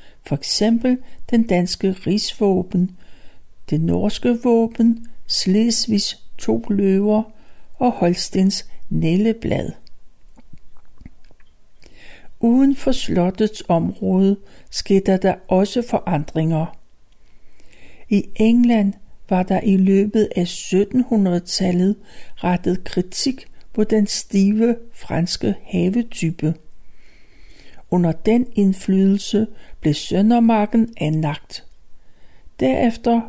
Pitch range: 180-230 Hz